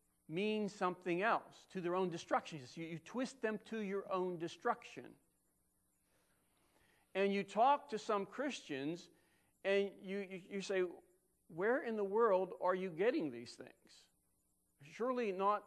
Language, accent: English, American